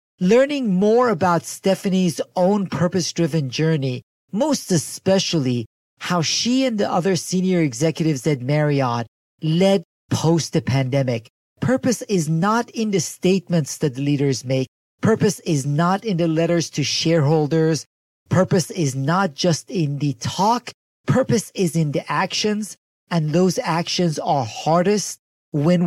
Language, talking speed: English, 135 wpm